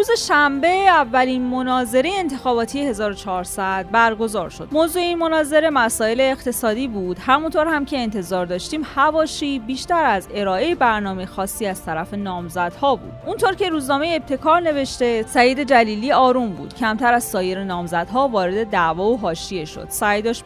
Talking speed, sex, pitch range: 140 wpm, female, 195-275 Hz